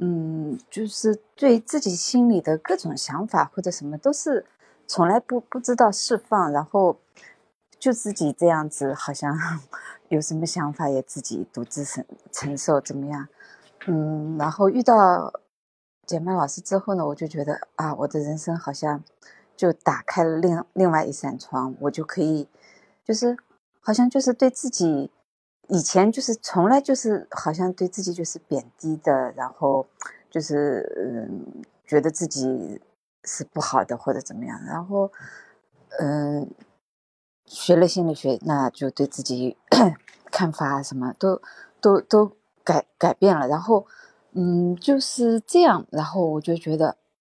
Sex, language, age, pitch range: female, Chinese, 30-49, 145-195 Hz